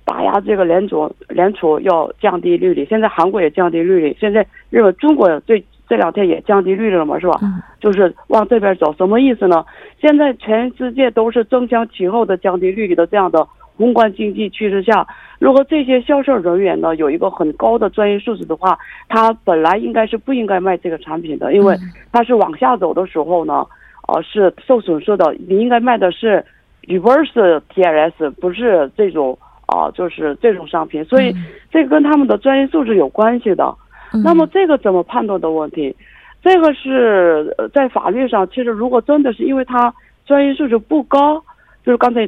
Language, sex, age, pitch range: Korean, female, 50-69, 185-265 Hz